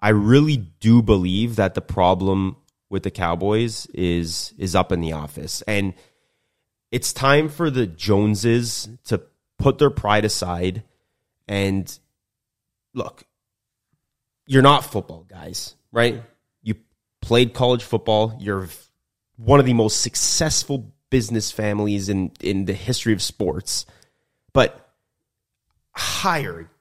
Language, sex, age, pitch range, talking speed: English, male, 30-49, 100-130 Hz, 120 wpm